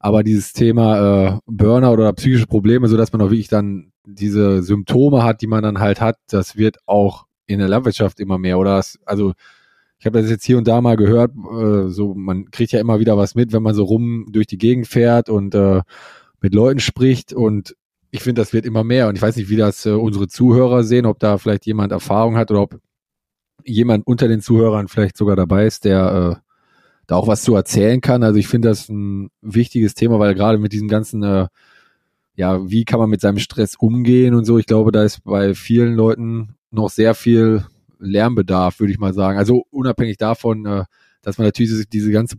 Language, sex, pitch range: German, male, 100-115 Hz